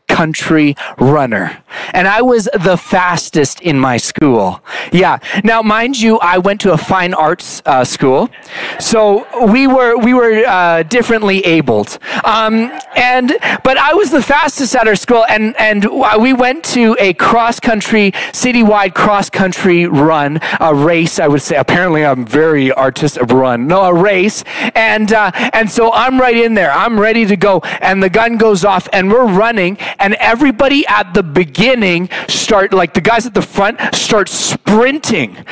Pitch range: 185-240 Hz